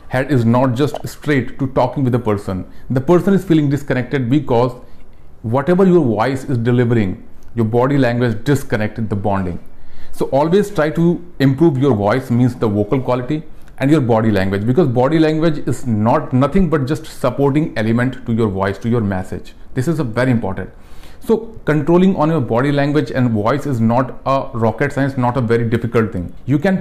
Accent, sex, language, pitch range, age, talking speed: native, male, Hindi, 115-150 Hz, 40-59, 185 wpm